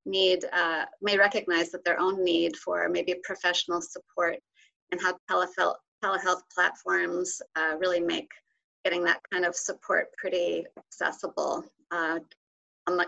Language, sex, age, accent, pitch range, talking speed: English, female, 30-49, American, 175-215 Hz, 130 wpm